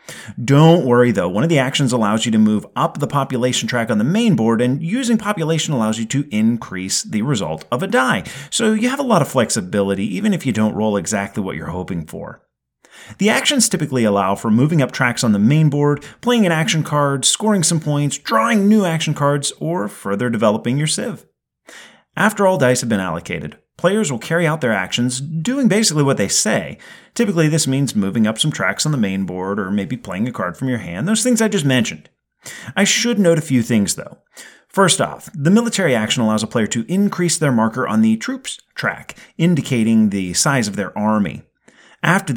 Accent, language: American, English